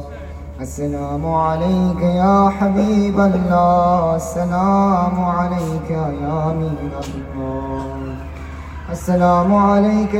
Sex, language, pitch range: male, Urdu, 125-205 Hz